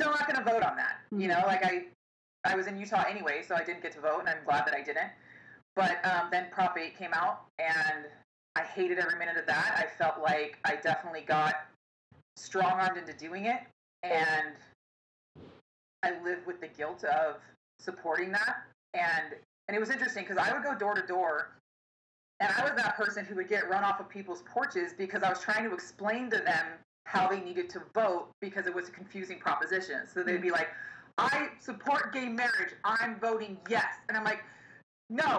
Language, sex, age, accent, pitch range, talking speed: English, female, 20-39, American, 180-250 Hz, 200 wpm